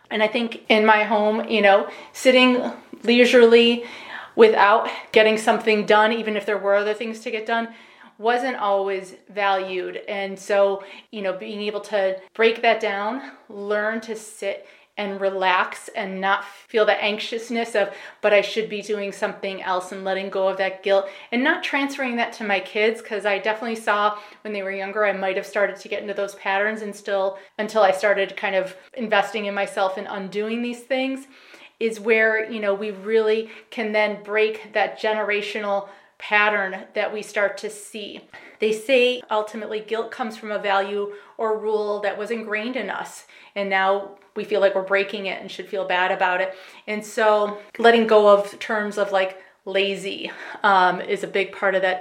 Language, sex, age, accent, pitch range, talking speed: English, female, 30-49, American, 200-225 Hz, 185 wpm